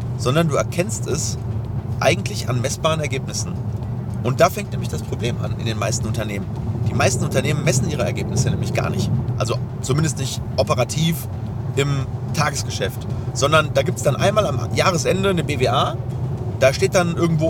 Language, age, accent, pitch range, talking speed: German, 30-49, German, 120-140 Hz, 165 wpm